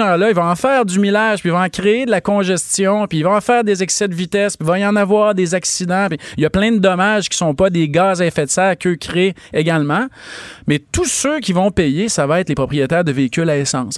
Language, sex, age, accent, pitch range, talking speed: French, male, 30-49, Canadian, 155-205 Hz, 290 wpm